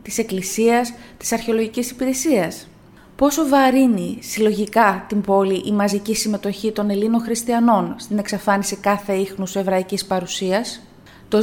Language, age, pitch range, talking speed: Greek, 20-39, 195-240 Hz, 120 wpm